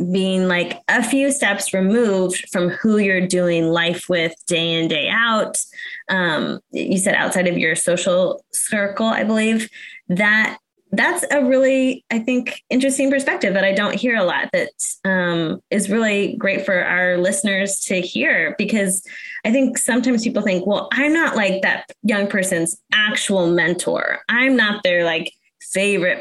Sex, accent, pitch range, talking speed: female, American, 185-240 Hz, 165 wpm